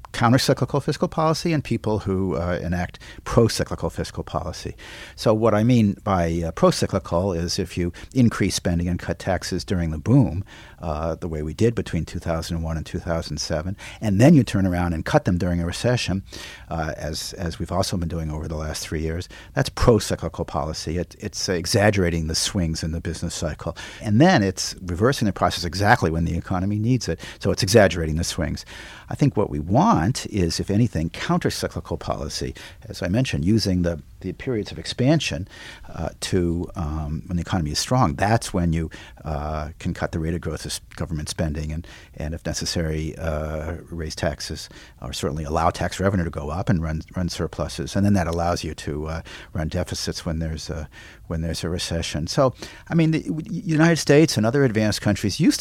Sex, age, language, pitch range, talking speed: male, 50-69, English, 80-105 Hz, 190 wpm